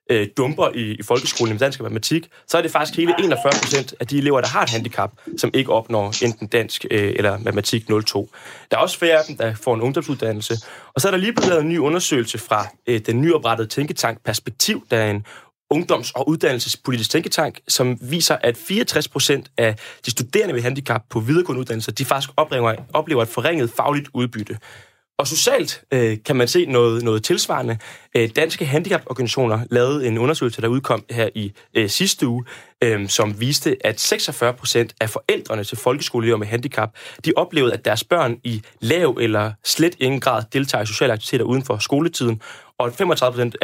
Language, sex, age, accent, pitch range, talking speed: Danish, male, 20-39, native, 115-145 Hz, 180 wpm